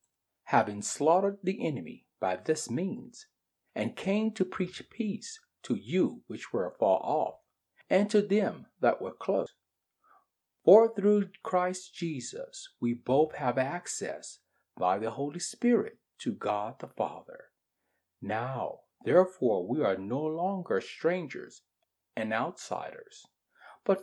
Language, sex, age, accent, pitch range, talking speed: English, male, 50-69, American, 140-220 Hz, 125 wpm